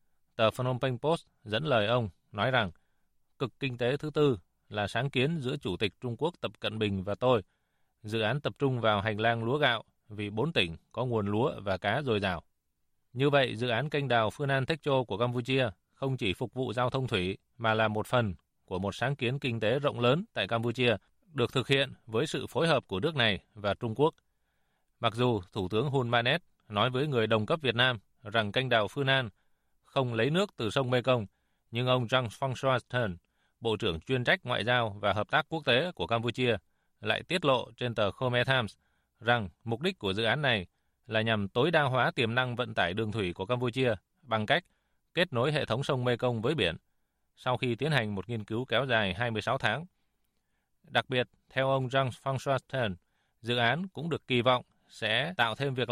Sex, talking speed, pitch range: male, 210 wpm, 105-135 Hz